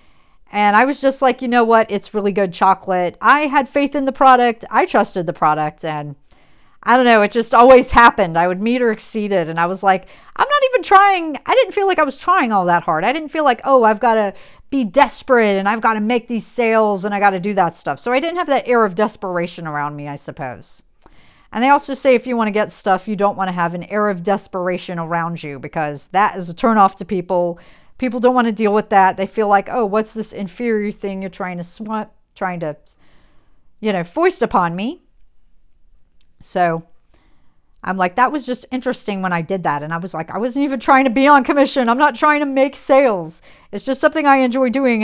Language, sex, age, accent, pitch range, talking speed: English, female, 50-69, American, 185-260 Hz, 240 wpm